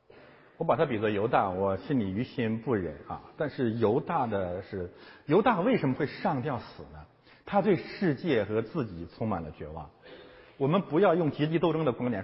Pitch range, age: 105-145 Hz, 50-69